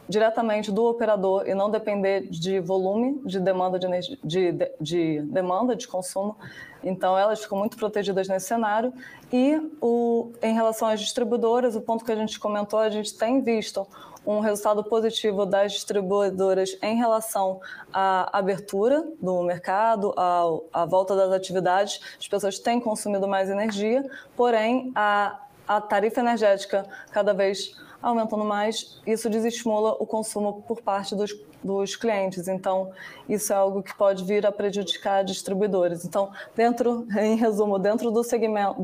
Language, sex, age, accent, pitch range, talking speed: Portuguese, female, 20-39, Brazilian, 195-225 Hz, 150 wpm